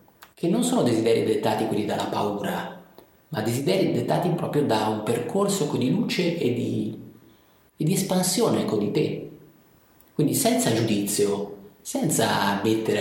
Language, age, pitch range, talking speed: Italian, 30-49, 110-155 Hz, 145 wpm